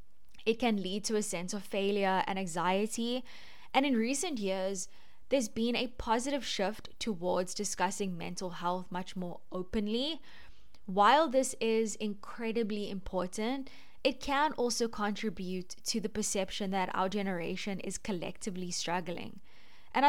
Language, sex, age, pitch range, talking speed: English, female, 10-29, 185-230 Hz, 135 wpm